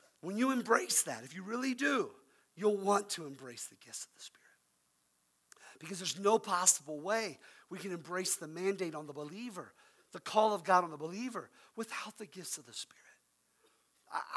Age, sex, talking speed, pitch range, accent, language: 50-69, male, 185 wpm, 155-230 Hz, American, English